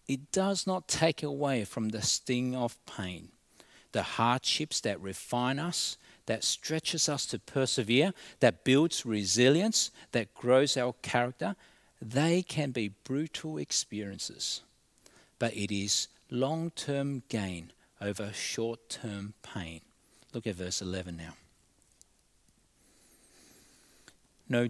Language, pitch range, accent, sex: English, 110-150 Hz, Australian, male